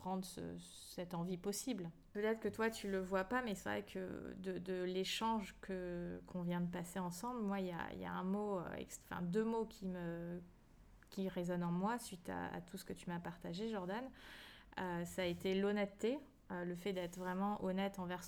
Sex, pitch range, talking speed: female, 175-200 Hz, 210 wpm